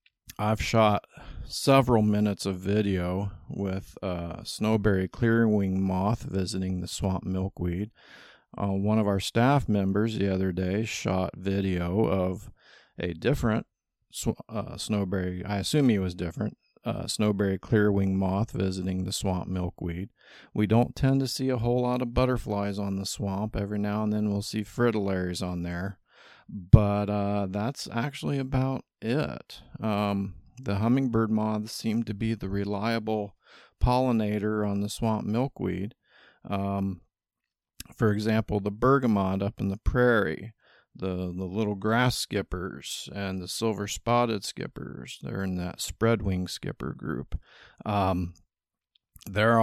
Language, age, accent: English, 50-69, American